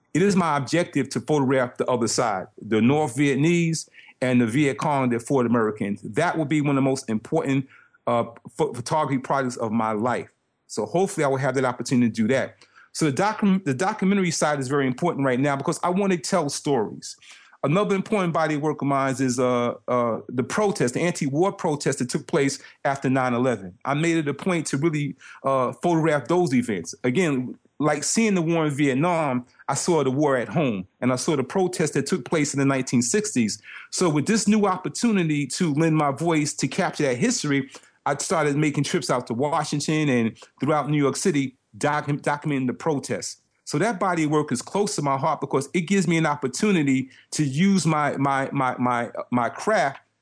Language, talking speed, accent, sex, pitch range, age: English, 200 wpm, American, male, 130-165 Hz, 40-59